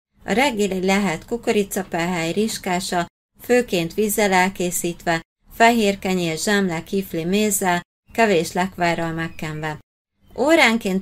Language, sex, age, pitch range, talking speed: Hungarian, female, 30-49, 175-210 Hz, 85 wpm